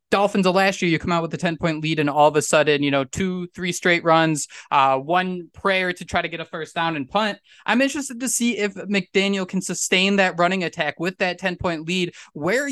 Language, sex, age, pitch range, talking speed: English, male, 20-39, 165-200 Hz, 245 wpm